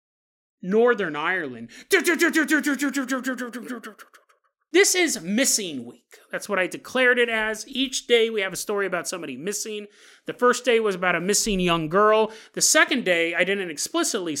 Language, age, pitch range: English, 30-49, 210-315 Hz